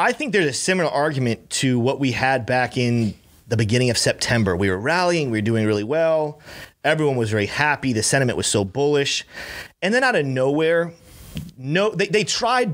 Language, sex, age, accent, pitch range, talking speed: English, male, 30-49, American, 120-170 Hz, 200 wpm